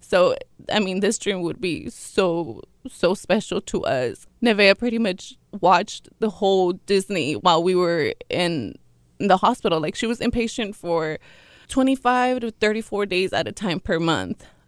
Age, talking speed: 20-39, 165 wpm